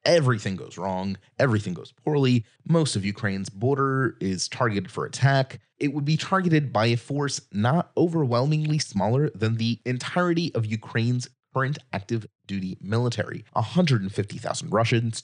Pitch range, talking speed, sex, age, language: 105-145 Hz, 140 wpm, male, 30-49, English